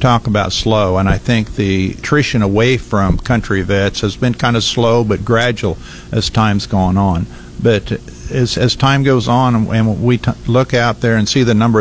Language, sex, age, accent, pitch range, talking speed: English, male, 50-69, American, 100-125 Hz, 200 wpm